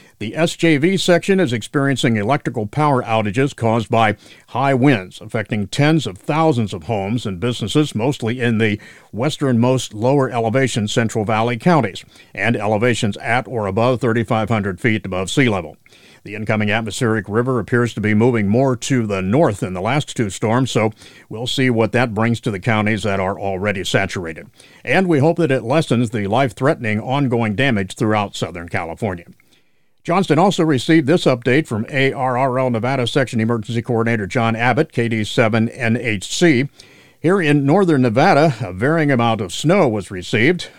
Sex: male